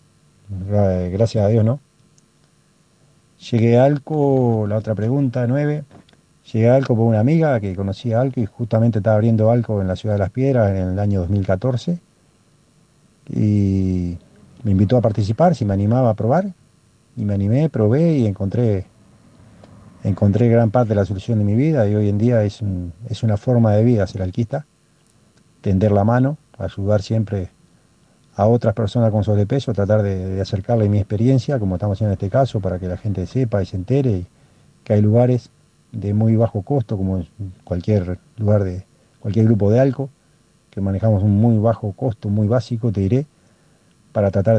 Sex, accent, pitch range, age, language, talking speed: male, Argentinian, 100-125 Hz, 40-59, Spanish, 175 wpm